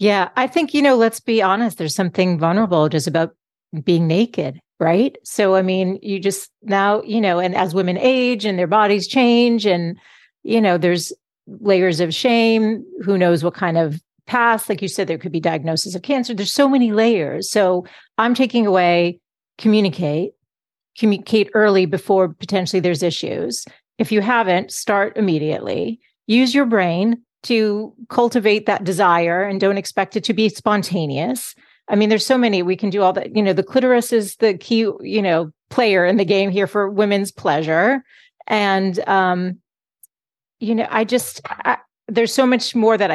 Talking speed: 175 wpm